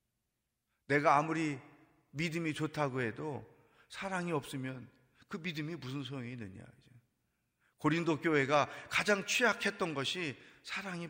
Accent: native